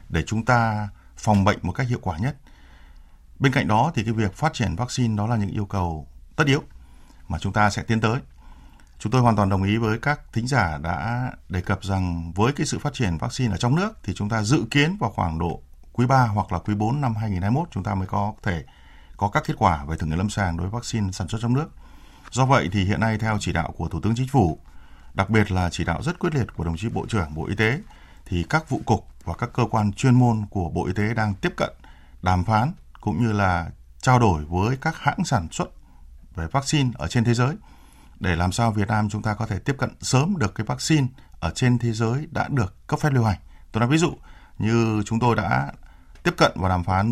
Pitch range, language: 85-120 Hz, Vietnamese